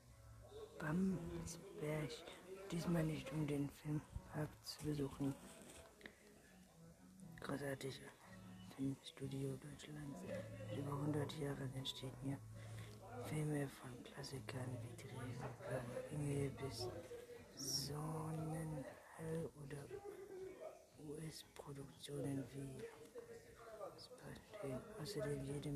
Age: 60-79